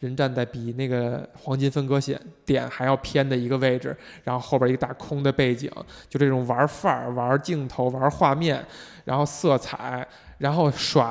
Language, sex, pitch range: Chinese, male, 130-155 Hz